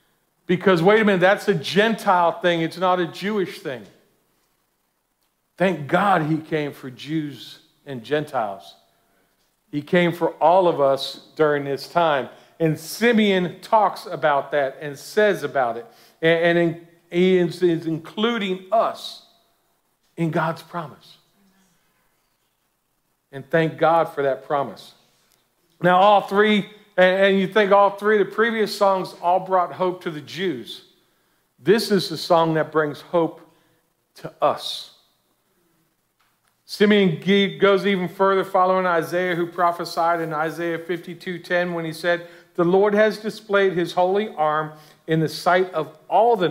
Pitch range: 155-190 Hz